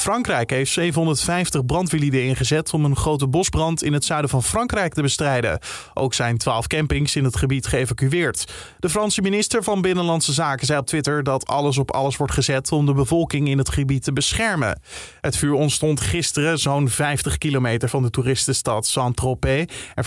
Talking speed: 175 wpm